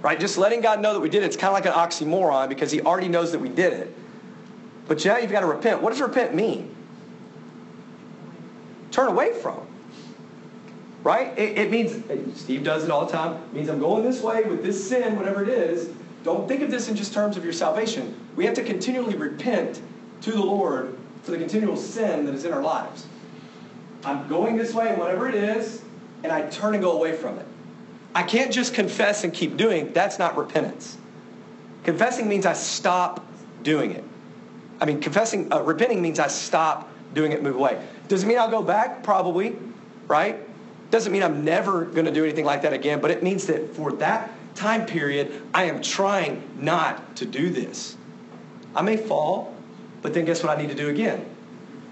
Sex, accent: male, American